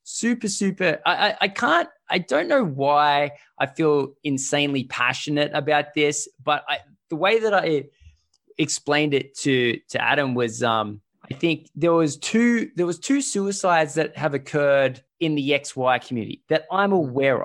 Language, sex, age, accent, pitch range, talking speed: English, male, 20-39, Australian, 135-175 Hz, 165 wpm